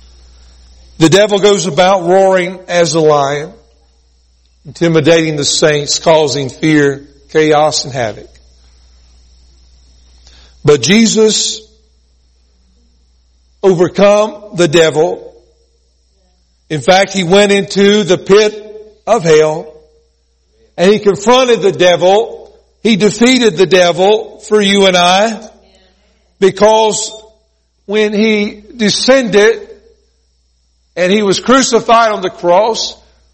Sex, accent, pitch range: male, American, 140-225 Hz